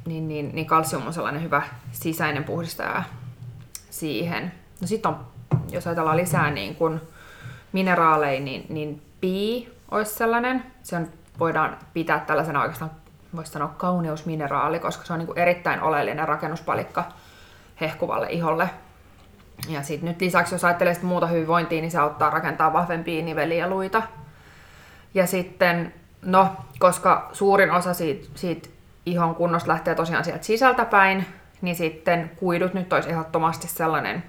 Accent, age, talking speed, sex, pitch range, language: native, 20-39, 135 wpm, female, 155-175 Hz, Finnish